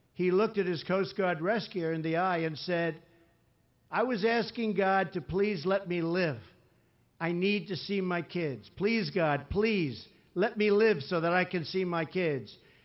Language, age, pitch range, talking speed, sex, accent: English, 60-79, 160-215 Hz, 185 wpm, male, American